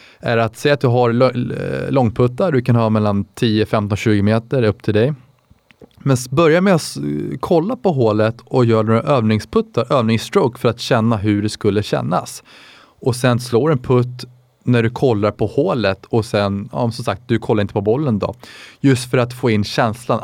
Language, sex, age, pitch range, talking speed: Swedish, male, 20-39, 110-130 Hz, 195 wpm